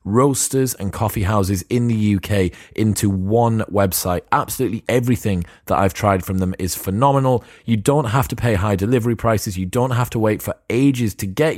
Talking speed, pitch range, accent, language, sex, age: 185 wpm, 95-120 Hz, British, English, male, 30-49